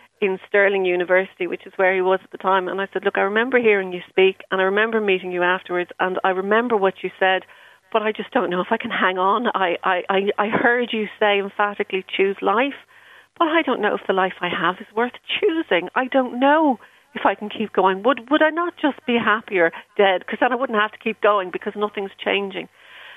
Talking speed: 235 wpm